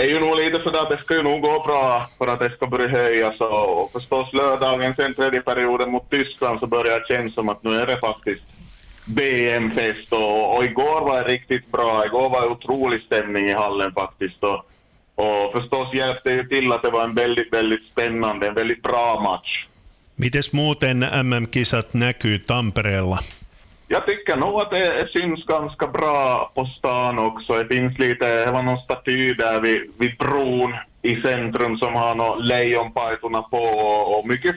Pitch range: 110-130 Hz